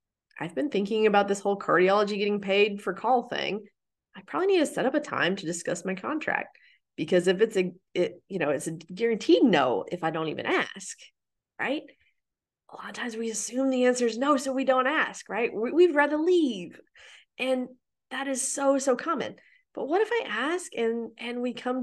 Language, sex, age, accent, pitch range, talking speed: English, female, 30-49, American, 180-270 Hz, 205 wpm